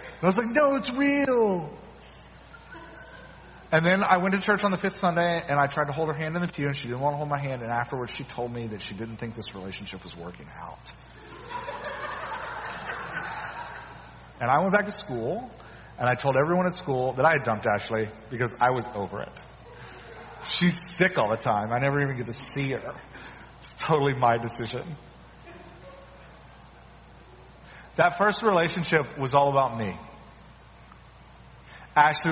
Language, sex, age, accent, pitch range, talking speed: English, male, 30-49, American, 95-160 Hz, 175 wpm